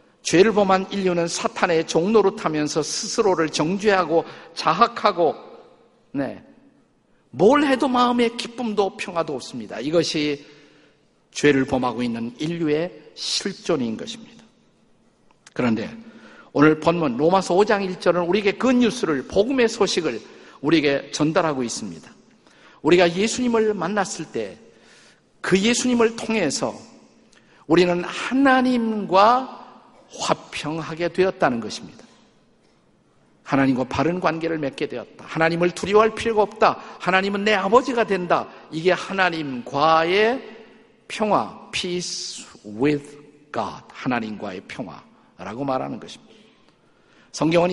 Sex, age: male, 50-69